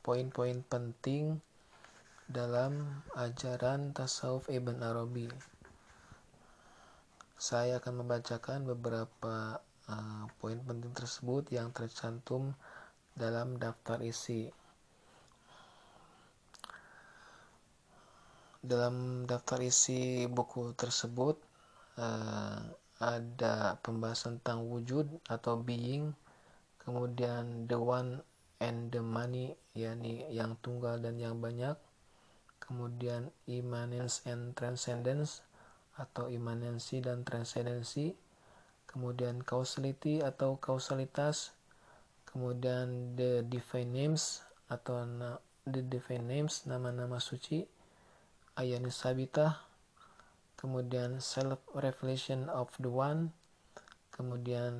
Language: Indonesian